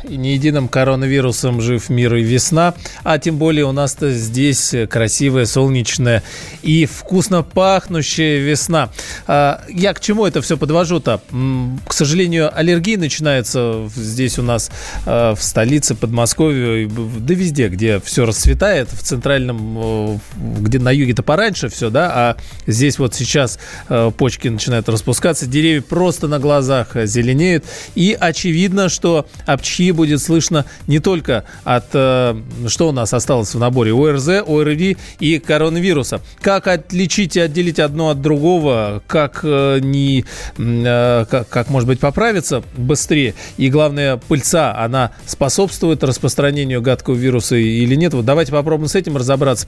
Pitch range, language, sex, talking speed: 120-160 Hz, Russian, male, 140 wpm